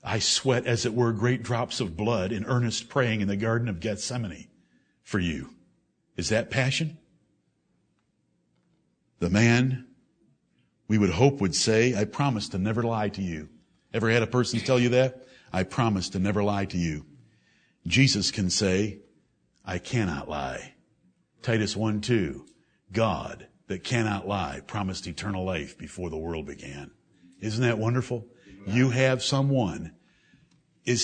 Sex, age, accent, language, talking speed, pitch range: male, 50-69, American, English, 150 wpm, 105-155 Hz